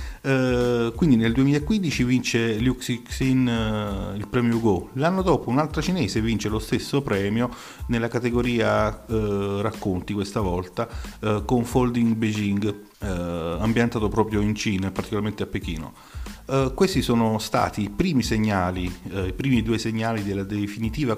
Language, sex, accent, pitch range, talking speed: Italian, male, native, 105-130 Hz, 145 wpm